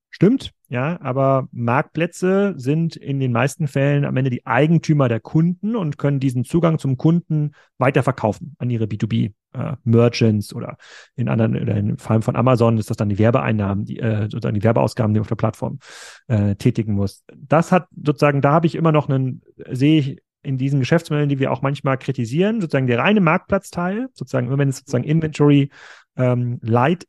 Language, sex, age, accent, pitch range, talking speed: German, male, 40-59, German, 120-150 Hz, 180 wpm